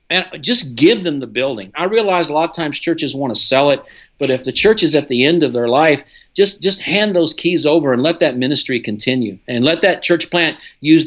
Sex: male